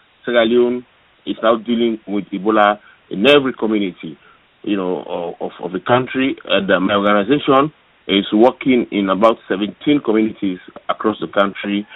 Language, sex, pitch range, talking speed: English, male, 100-115 Hz, 140 wpm